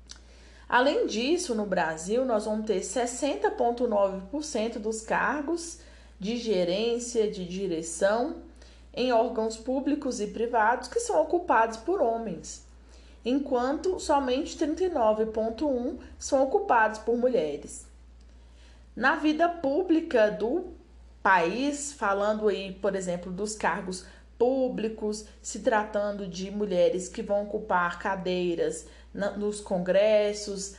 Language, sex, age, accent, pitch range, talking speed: Portuguese, female, 20-39, Brazilian, 195-270 Hz, 105 wpm